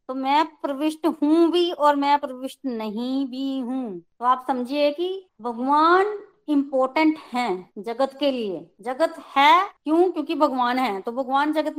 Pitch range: 220-290 Hz